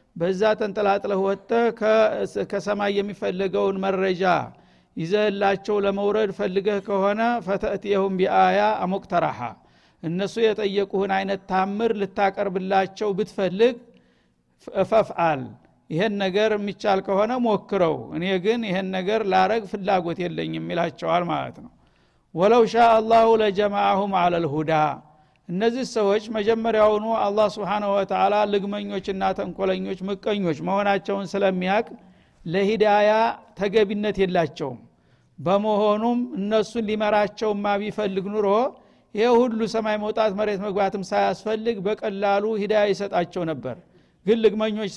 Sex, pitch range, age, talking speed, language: male, 190-215 Hz, 60-79, 95 wpm, Amharic